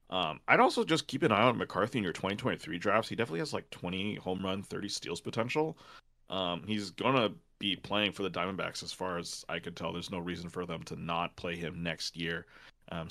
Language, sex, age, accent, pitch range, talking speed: English, male, 30-49, American, 85-115 Hz, 230 wpm